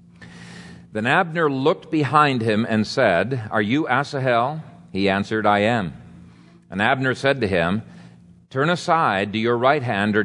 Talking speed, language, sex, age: 150 wpm, English, male, 50-69